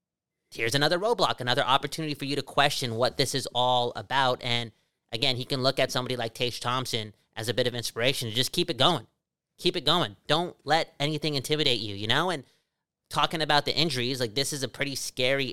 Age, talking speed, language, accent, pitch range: 30-49, 210 wpm, English, American, 125-150 Hz